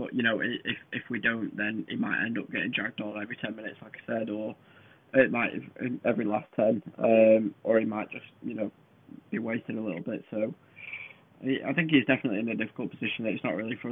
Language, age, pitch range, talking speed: English, 10-29, 110-140 Hz, 225 wpm